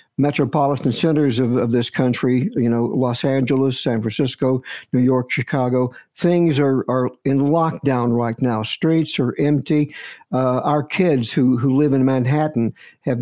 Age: 60-79